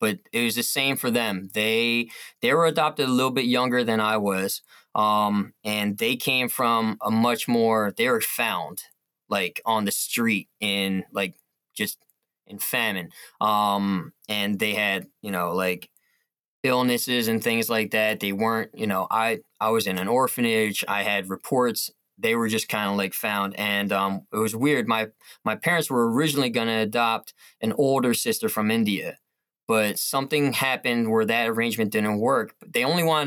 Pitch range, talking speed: 110-140 Hz, 180 wpm